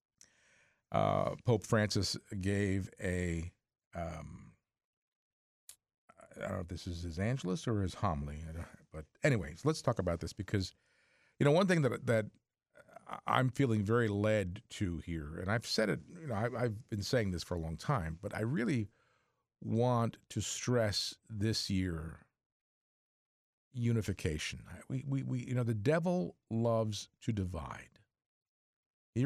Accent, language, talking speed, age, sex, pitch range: American, English, 150 wpm, 50-69, male, 95-125 Hz